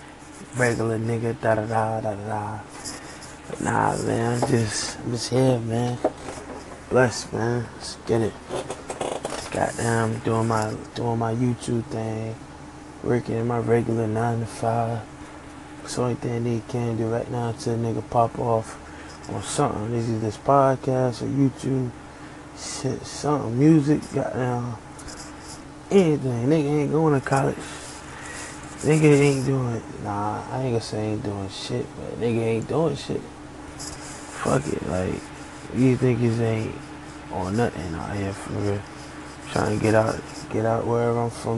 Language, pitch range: English, 110-125 Hz